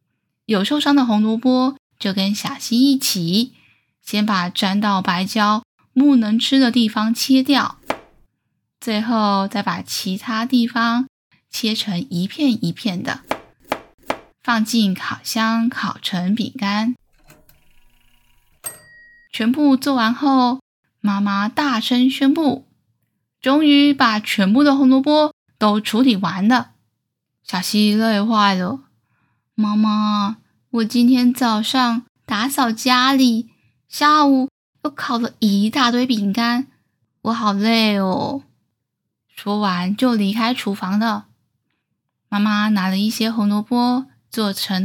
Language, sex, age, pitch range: Chinese, female, 10-29, 200-255 Hz